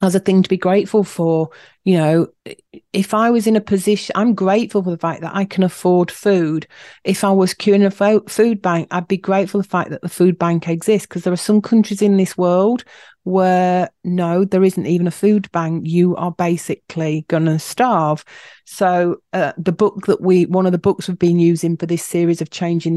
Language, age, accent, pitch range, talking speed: English, 40-59, British, 165-195 Hz, 215 wpm